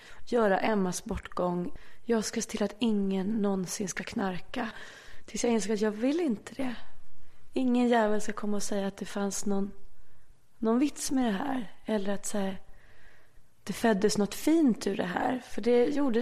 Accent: Swedish